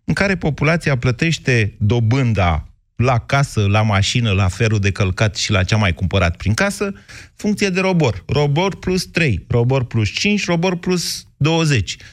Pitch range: 105-145 Hz